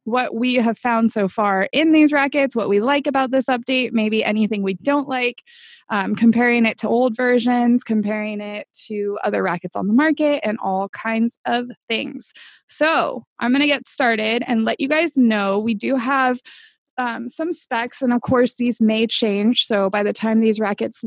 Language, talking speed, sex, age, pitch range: English, 195 wpm, female, 20-39, 220-275 Hz